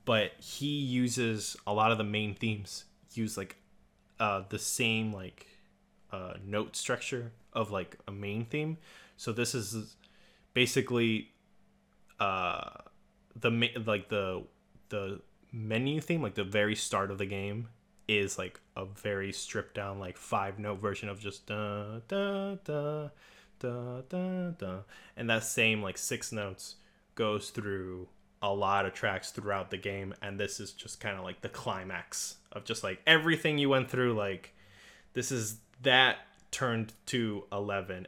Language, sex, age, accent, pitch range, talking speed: English, male, 20-39, American, 100-120 Hz, 155 wpm